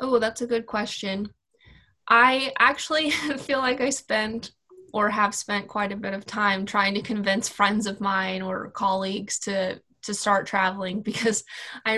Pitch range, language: 200-235 Hz, English